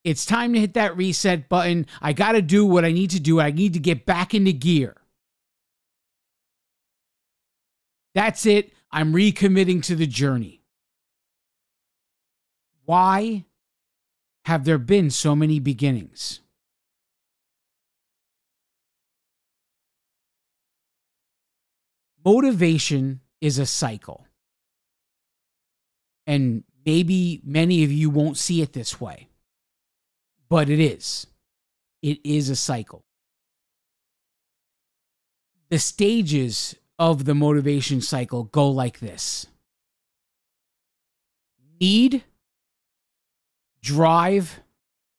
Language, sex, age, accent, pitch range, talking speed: English, male, 50-69, American, 125-180 Hz, 90 wpm